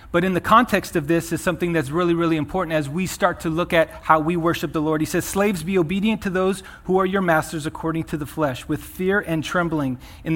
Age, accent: 30-49, American